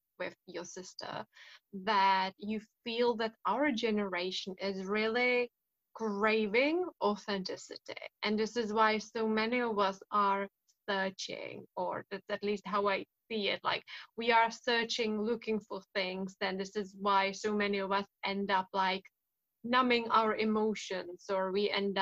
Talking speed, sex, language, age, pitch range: 150 wpm, female, English, 10-29, 195-230 Hz